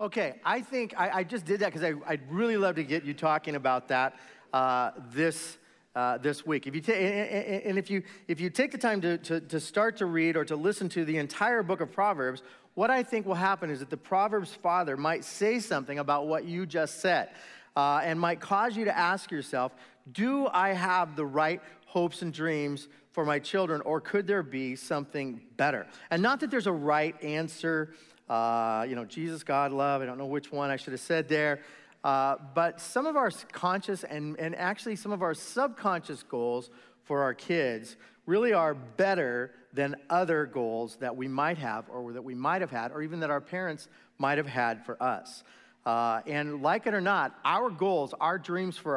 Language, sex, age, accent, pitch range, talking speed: English, male, 40-59, American, 140-190 Hz, 205 wpm